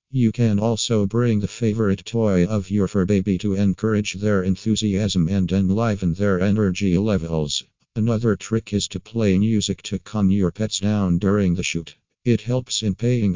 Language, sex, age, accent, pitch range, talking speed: English, male, 50-69, American, 95-110 Hz, 170 wpm